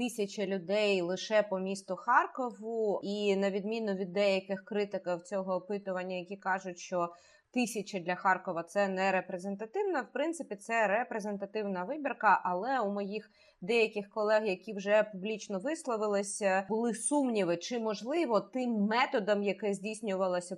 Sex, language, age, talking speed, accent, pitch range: female, Ukrainian, 20-39, 135 wpm, native, 190-225 Hz